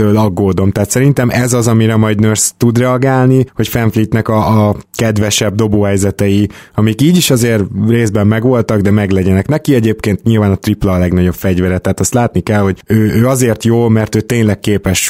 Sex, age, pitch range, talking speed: male, 20-39, 95-115 Hz, 180 wpm